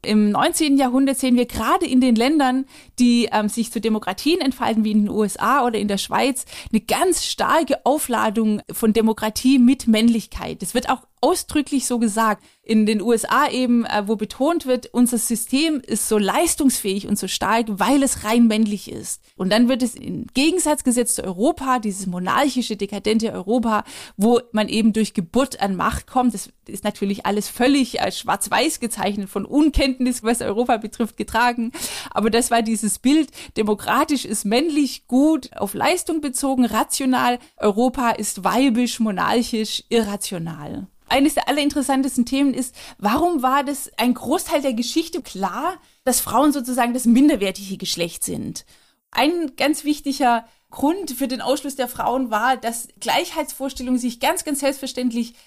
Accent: German